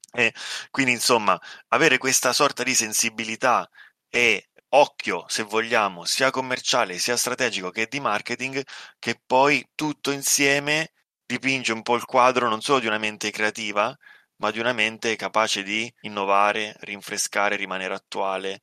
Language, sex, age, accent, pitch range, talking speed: Italian, male, 20-39, native, 100-115 Hz, 140 wpm